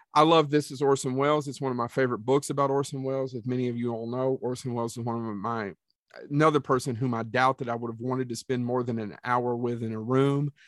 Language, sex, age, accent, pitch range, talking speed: English, male, 40-59, American, 115-140 Hz, 265 wpm